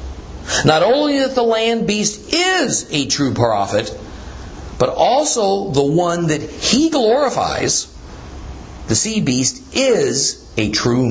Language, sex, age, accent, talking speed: English, male, 50-69, American, 125 wpm